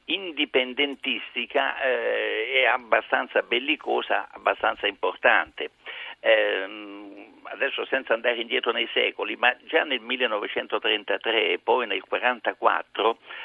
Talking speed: 100 wpm